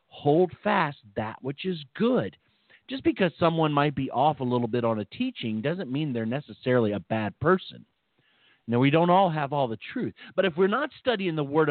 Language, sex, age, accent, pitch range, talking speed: English, male, 40-59, American, 145-245 Hz, 205 wpm